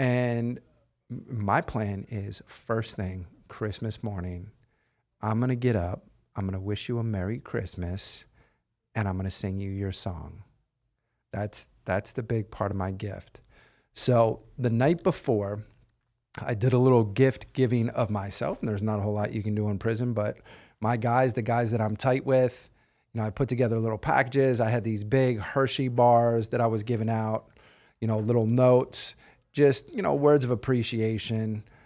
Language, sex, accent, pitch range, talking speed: English, male, American, 105-125 Hz, 175 wpm